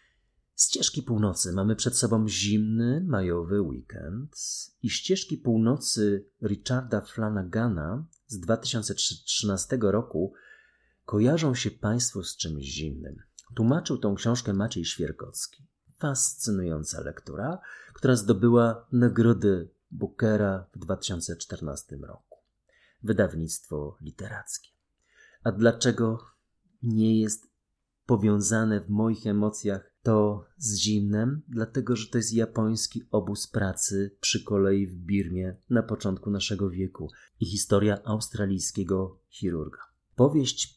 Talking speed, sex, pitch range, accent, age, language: 100 wpm, male, 95-115 Hz, native, 30-49, Polish